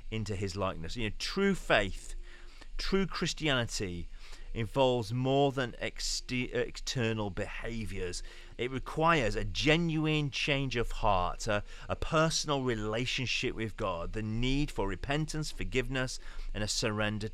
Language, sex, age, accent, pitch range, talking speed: English, male, 40-59, British, 100-140 Hz, 120 wpm